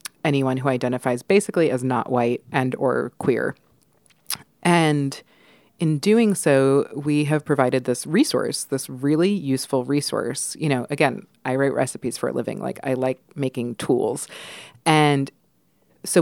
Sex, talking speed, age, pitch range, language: female, 145 wpm, 30-49, 130-165 Hz, English